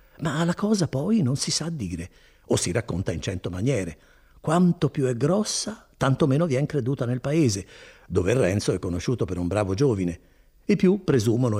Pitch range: 90-145 Hz